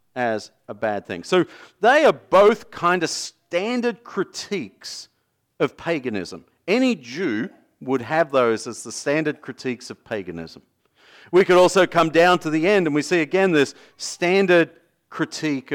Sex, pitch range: male, 115-175 Hz